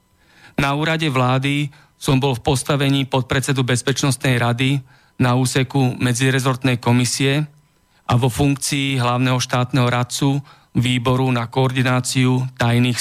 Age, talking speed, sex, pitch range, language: 40-59, 110 wpm, male, 120-135 Hz, Slovak